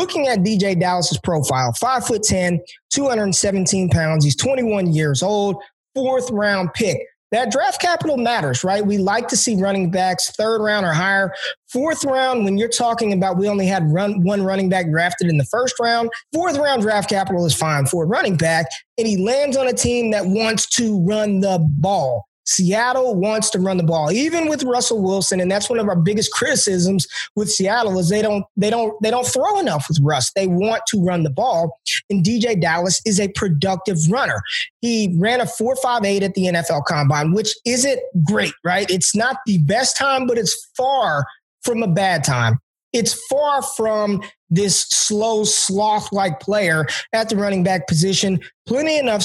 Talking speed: 190 wpm